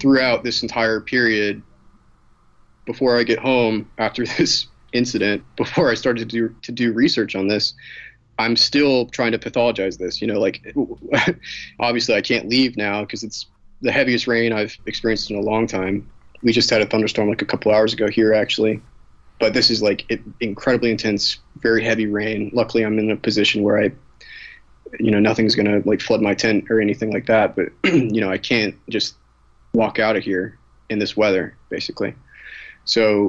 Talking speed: 180 wpm